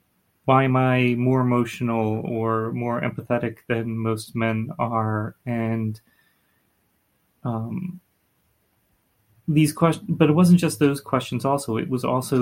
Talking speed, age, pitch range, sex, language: 125 wpm, 30-49, 115-130 Hz, male, English